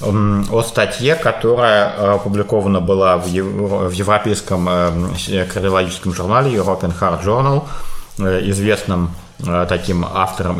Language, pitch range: English, 85-100 Hz